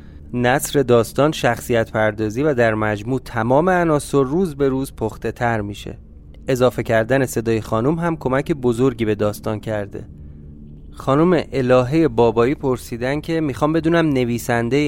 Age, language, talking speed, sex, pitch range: 30-49, Persian, 135 wpm, male, 110-140 Hz